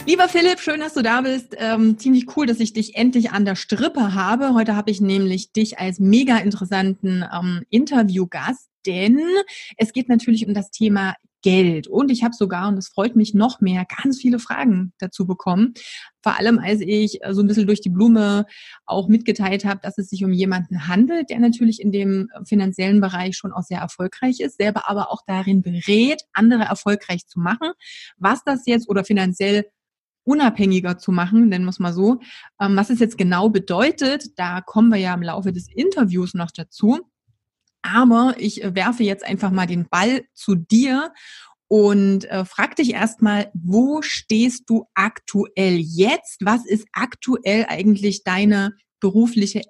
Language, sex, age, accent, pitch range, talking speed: German, female, 30-49, German, 190-235 Hz, 175 wpm